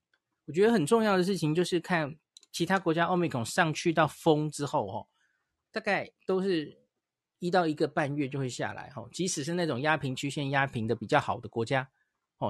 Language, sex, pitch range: Chinese, male, 125-170 Hz